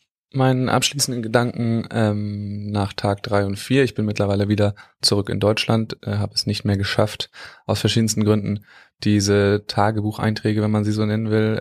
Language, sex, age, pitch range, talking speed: German, male, 20-39, 100-110 Hz, 170 wpm